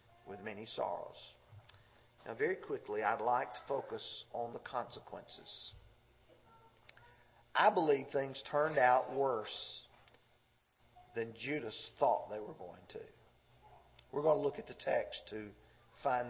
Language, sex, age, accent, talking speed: English, male, 40-59, American, 130 wpm